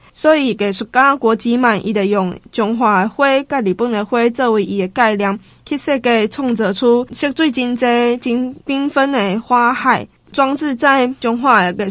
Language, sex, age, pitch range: Chinese, female, 10-29, 215-260 Hz